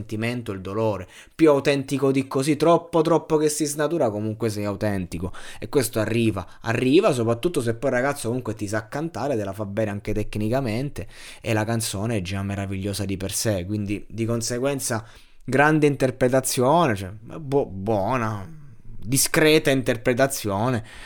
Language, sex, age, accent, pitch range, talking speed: Italian, male, 20-39, native, 100-115 Hz, 150 wpm